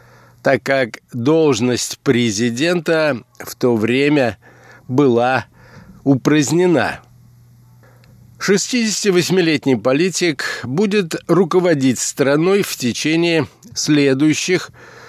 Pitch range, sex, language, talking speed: 120-155 Hz, male, Russian, 70 wpm